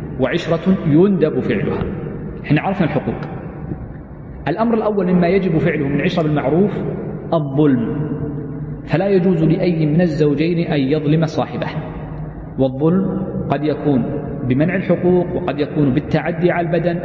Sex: male